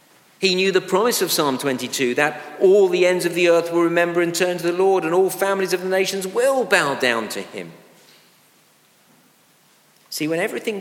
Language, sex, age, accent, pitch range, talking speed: English, male, 50-69, British, 120-170 Hz, 195 wpm